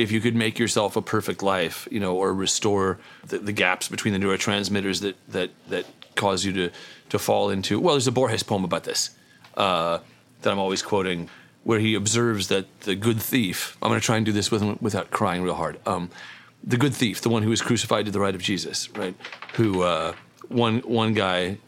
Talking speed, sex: 215 wpm, male